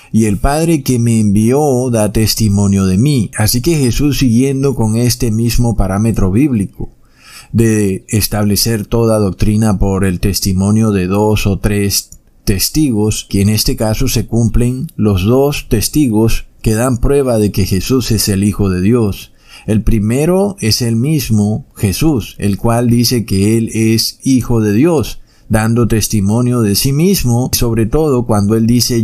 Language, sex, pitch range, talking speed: Spanish, male, 100-120 Hz, 155 wpm